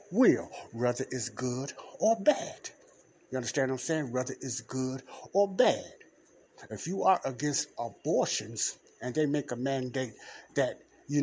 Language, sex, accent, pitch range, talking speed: English, male, American, 125-160 Hz, 150 wpm